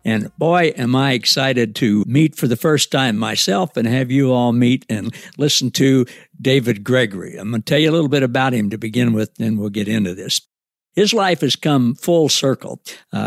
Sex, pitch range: male, 120-155 Hz